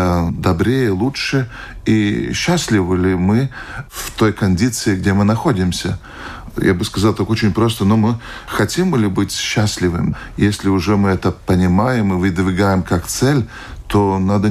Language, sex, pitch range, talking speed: Russian, male, 95-110 Hz, 145 wpm